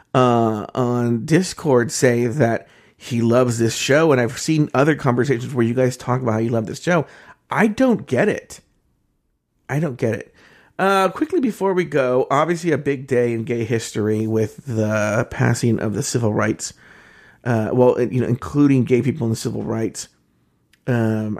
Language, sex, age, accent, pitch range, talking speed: English, male, 40-59, American, 115-165 Hz, 175 wpm